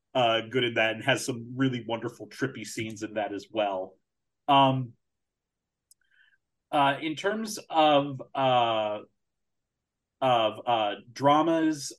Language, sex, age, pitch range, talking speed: English, male, 30-49, 115-135 Hz, 120 wpm